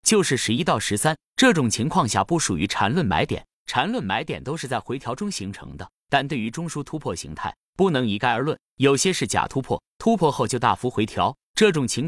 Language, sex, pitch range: Chinese, male, 110-170 Hz